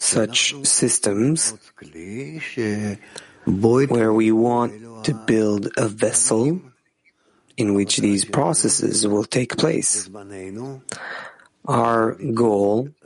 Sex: male